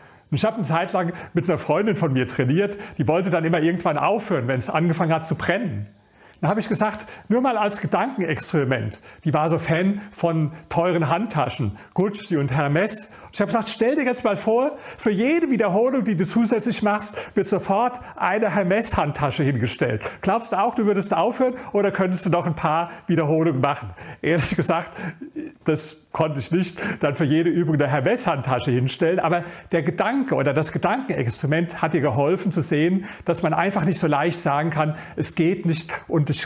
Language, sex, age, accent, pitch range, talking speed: German, male, 40-59, German, 155-205 Hz, 185 wpm